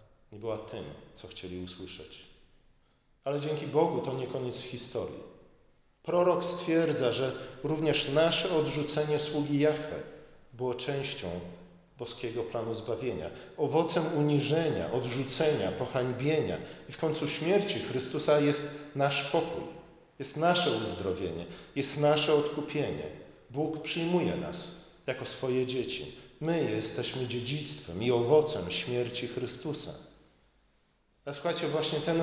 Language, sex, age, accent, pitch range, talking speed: Polish, male, 40-59, native, 130-160 Hz, 115 wpm